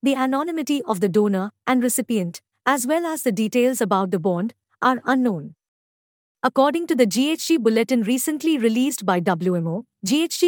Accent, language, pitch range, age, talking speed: Indian, English, 215-275 Hz, 50-69, 155 wpm